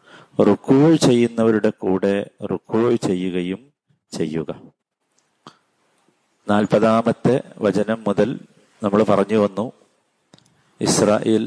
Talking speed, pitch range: 70 wpm, 100-120 Hz